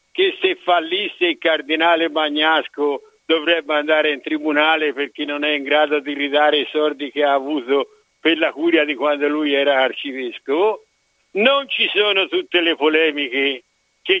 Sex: male